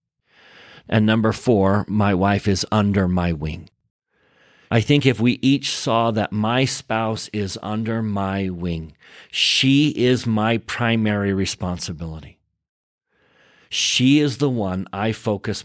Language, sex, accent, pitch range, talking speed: English, male, American, 95-120 Hz, 125 wpm